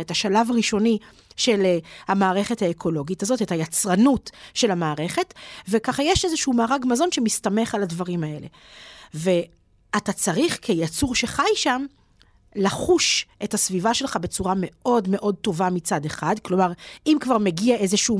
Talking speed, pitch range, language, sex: 135 wpm, 185-245 Hz, Hebrew, female